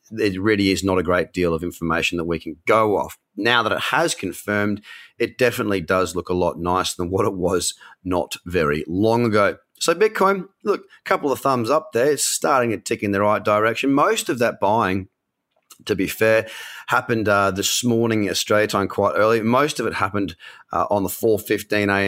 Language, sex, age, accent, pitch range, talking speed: English, male, 30-49, Australian, 95-120 Hz, 200 wpm